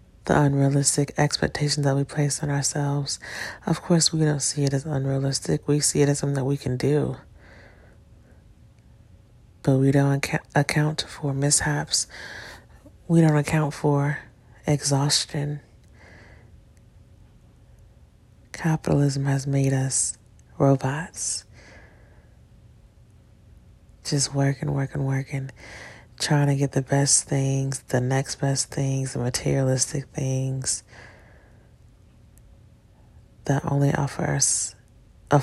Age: 30-49